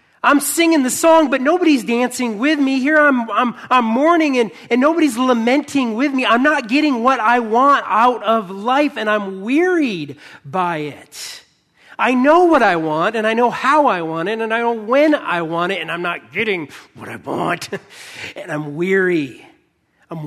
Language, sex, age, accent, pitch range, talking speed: English, male, 40-59, American, 165-270 Hz, 190 wpm